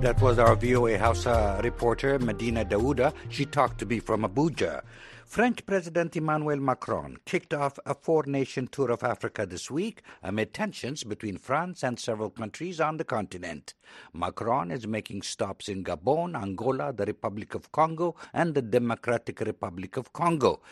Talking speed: 160 wpm